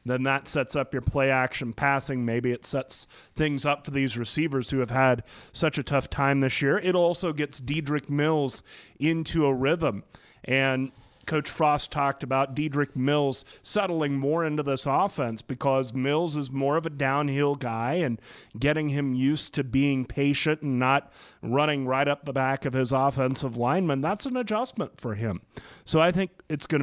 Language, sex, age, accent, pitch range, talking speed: English, male, 30-49, American, 130-155 Hz, 180 wpm